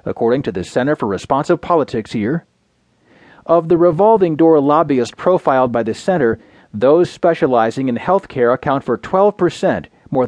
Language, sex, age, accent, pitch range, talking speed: English, male, 40-59, American, 125-170 Hz, 150 wpm